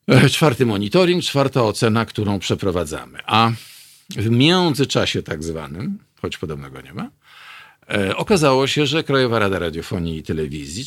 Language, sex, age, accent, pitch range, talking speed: Polish, male, 50-69, native, 85-140 Hz, 125 wpm